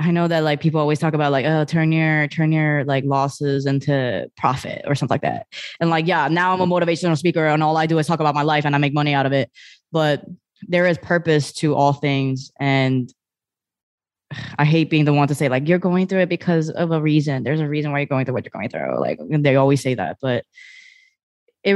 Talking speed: 245 wpm